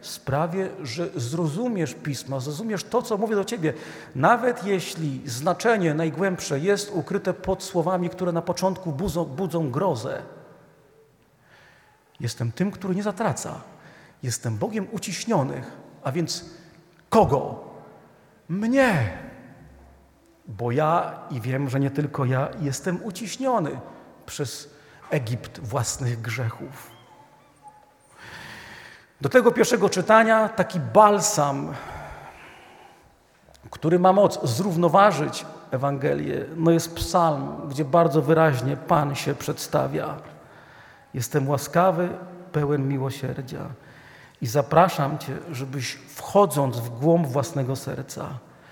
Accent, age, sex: native, 40-59, male